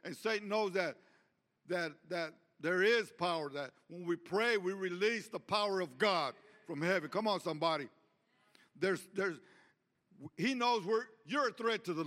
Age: 60-79